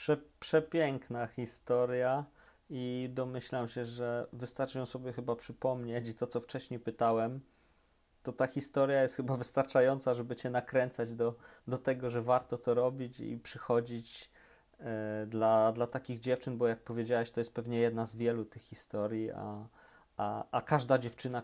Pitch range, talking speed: 115-145 Hz, 150 wpm